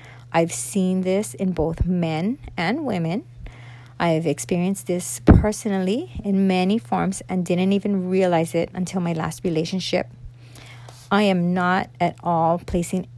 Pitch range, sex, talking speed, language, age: 125-200 Hz, female, 140 wpm, English, 40-59